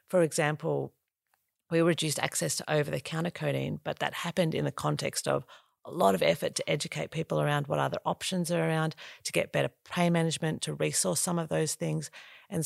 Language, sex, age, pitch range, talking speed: English, female, 40-59, 140-170 Hz, 190 wpm